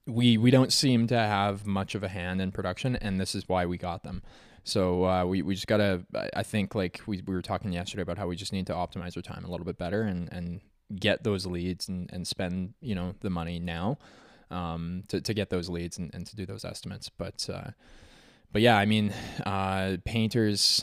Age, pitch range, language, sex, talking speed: 20-39, 90-110 Hz, English, male, 230 wpm